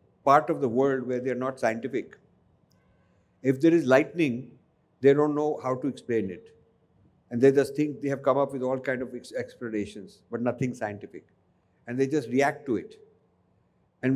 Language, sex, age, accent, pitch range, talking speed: English, male, 50-69, Indian, 130-160 Hz, 180 wpm